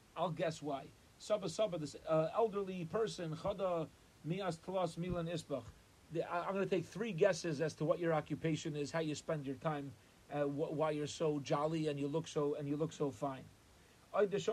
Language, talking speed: English, 180 wpm